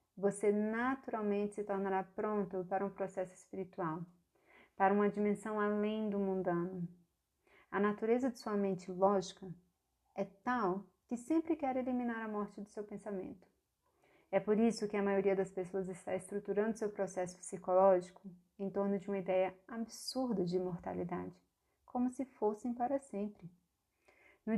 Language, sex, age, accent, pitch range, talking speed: Portuguese, female, 30-49, Brazilian, 190-220 Hz, 145 wpm